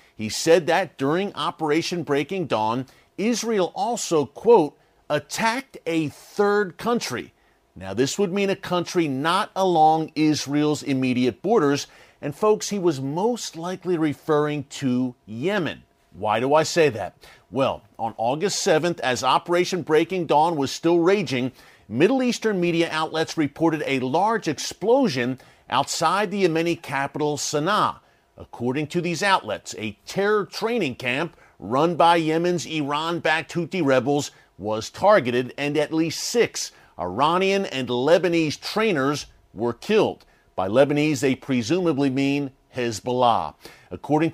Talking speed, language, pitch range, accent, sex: 130 wpm, English, 135-175 Hz, American, male